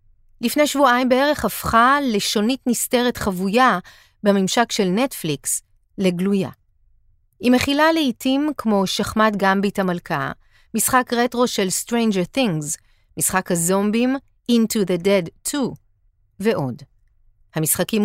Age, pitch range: 30-49, 165-240 Hz